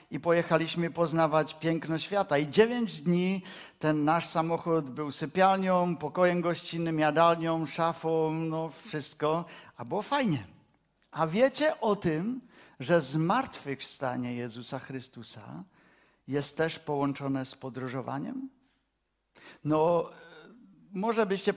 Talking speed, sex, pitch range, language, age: 105 wpm, male, 145-180 Hz, Czech, 50-69